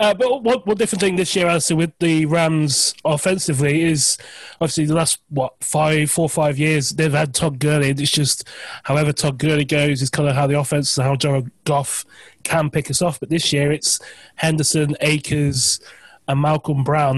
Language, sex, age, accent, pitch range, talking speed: English, male, 20-39, British, 130-150 Hz, 190 wpm